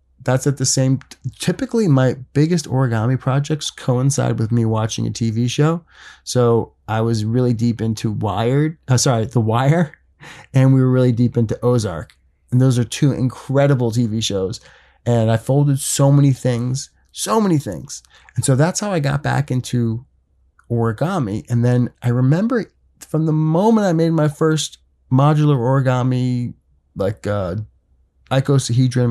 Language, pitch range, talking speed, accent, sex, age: English, 115-140 Hz, 155 wpm, American, male, 30-49